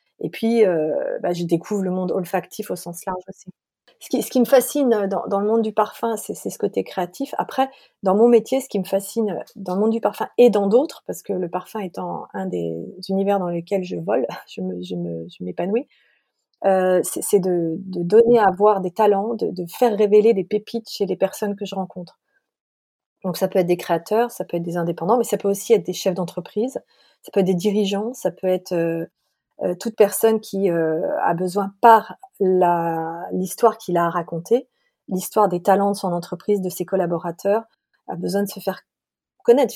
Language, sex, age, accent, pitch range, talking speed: French, female, 30-49, French, 180-220 Hz, 205 wpm